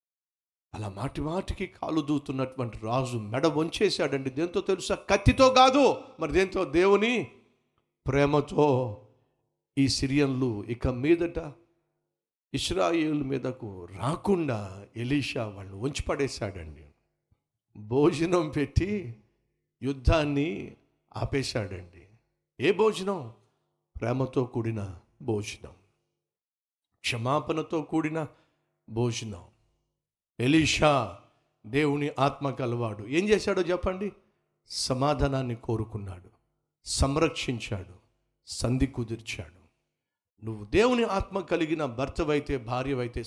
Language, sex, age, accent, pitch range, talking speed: Telugu, male, 60-79, native, 115-180 Hz, 80 wpm